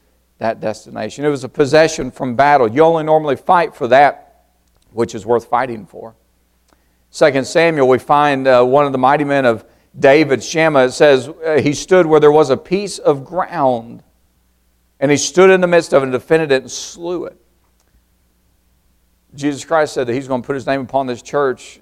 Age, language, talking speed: 50-69, English, 190 wpm